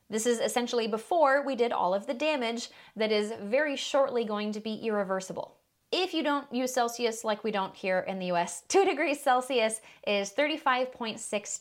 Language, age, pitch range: English, 20-39, 195-240 Hz